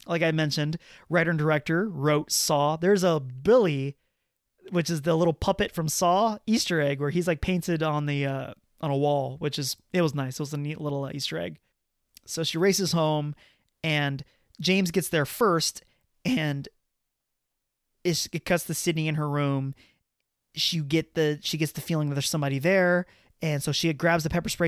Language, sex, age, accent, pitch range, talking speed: English, male, 30-49, American, 145-175 Hz, 190 wpm